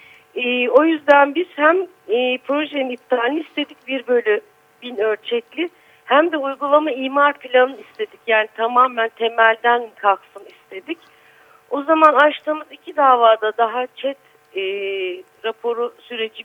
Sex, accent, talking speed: female, native, 125 wpm